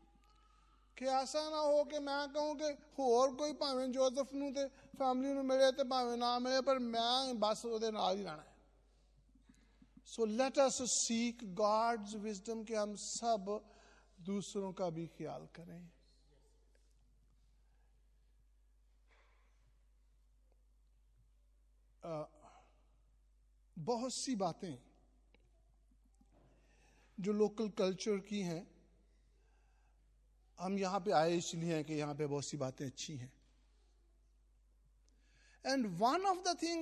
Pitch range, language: 170-270 Hz, Hindi